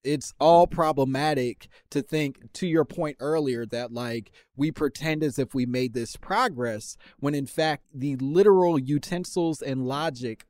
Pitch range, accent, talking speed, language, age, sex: 105-135 Hz, American, 155 wpm, English, 20-39, male